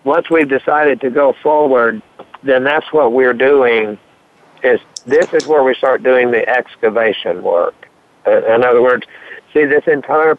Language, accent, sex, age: English, American, male, 60-79